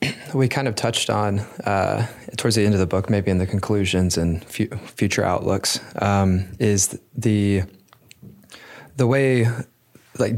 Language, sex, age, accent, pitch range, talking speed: English, male, 20-39, American, 90-110 Hz, 150 wpm